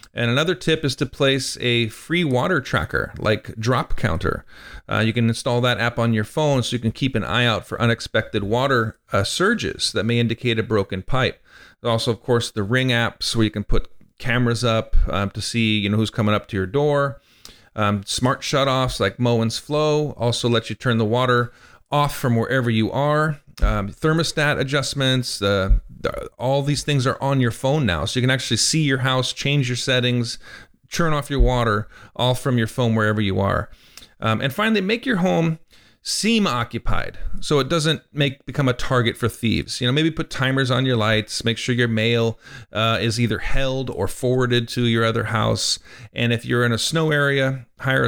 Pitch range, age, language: 110-135 Hz, 40-59, English